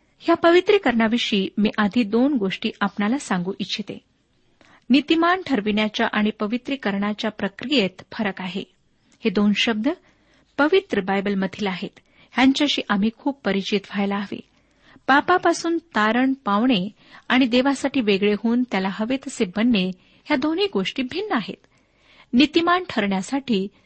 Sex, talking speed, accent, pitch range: female, 115 wpm, native, 205-280 Hz